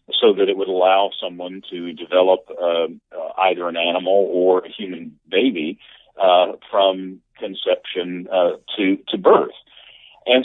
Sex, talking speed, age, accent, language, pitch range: male, 140 wpm, 50-69, American, English, 95-135 Hz